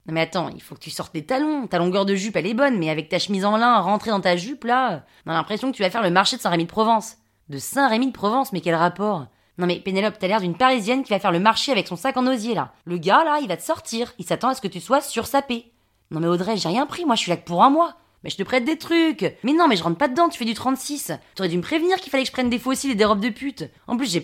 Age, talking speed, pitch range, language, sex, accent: 20-39, 330 wpm, 185-260 Hz, French, female, French